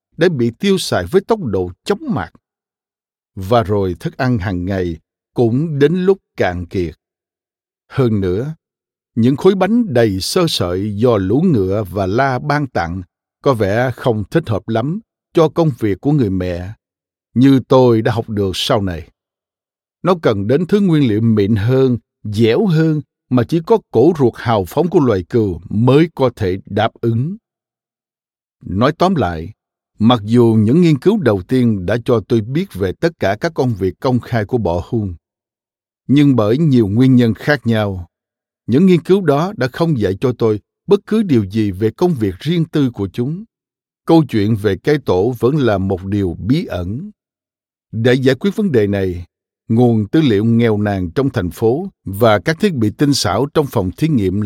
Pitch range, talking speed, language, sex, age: 100-145 Hz, 185 wpm, Vietnamese, male, 60-79